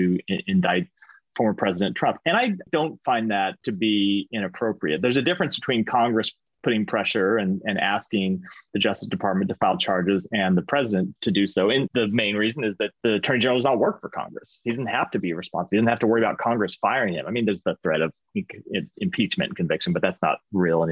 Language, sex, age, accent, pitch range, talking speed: English, male, 30-49, American, 100-130 Hz, 225 wpm